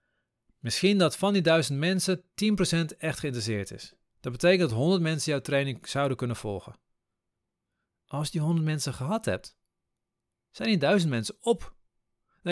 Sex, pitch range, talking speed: male, 120-170 Hz, 160 wpm